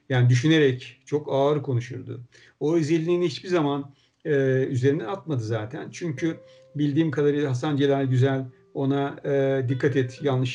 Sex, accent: male, native